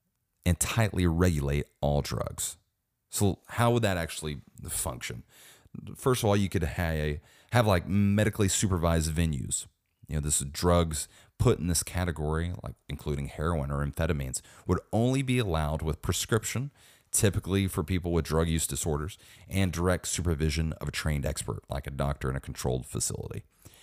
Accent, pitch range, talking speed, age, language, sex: American, 80-100 Hz, 160 wpm, 30-49, English, male